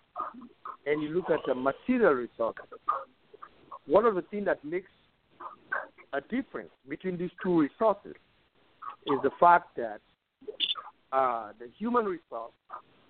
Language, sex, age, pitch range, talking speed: English, male, 60-79, 155-235 Hz, 125 wpm